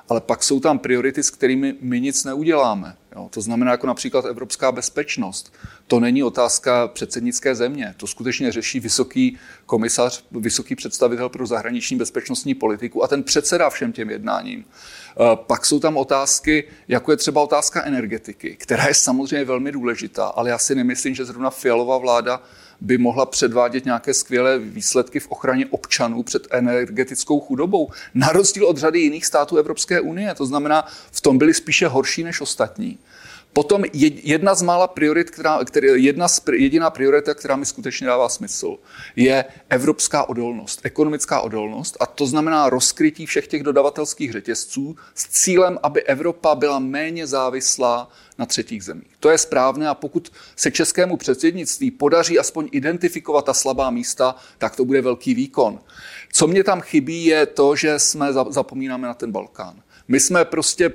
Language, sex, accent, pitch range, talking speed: Czech, male, native, 130-165 Hz, 155 wpm